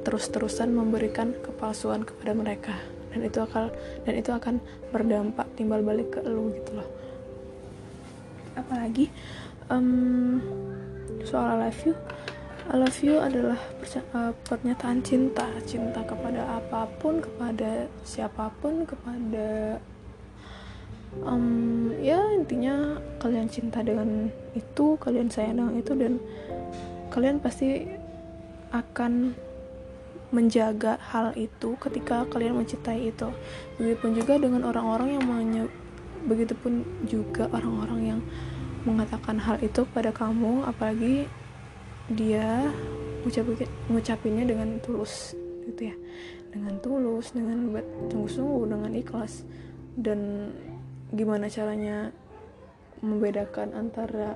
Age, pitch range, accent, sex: 10-29, 205-245 Hz, native, female